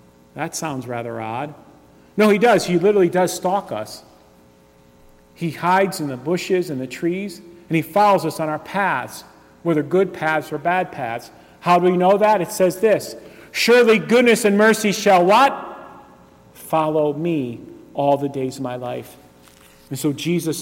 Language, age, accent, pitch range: English, 40-59, American, 130-185 Hz